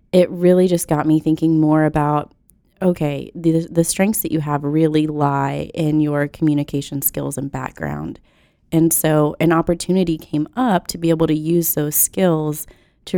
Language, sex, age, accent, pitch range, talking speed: English, female, 20-39, American, 150-170 Hz, 170 wpm